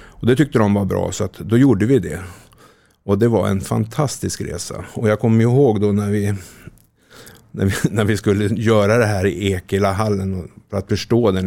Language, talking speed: Swedish, 210 wpm